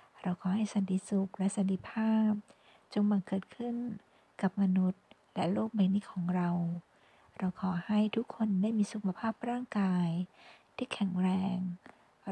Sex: female